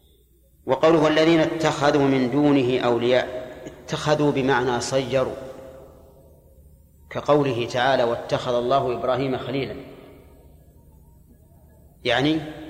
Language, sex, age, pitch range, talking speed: Arabic, male, 40-59, 110-145 Hz, 75 wpm